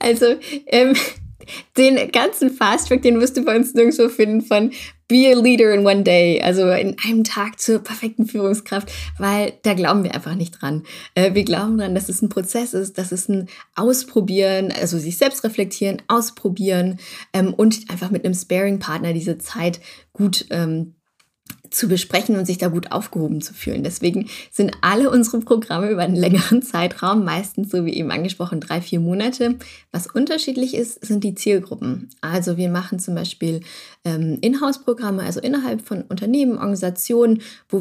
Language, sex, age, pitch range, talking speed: German, female, 20-39, 180-230 Hz, 170 wpm